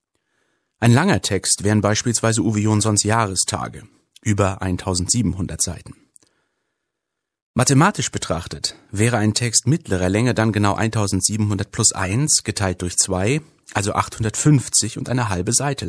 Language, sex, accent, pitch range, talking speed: German, male, German, 100-130 Hz, 120 wpm